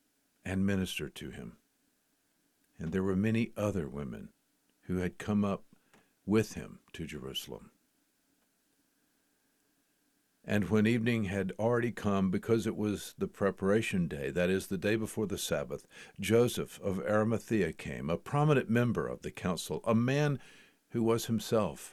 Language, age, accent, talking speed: English, 60-79, American, 140 wpm